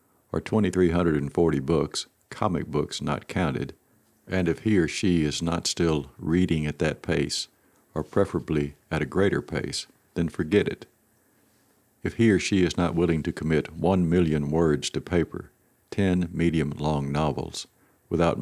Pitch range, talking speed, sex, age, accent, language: 75-90 Hz, 150 wpm, male, 60-79, American, English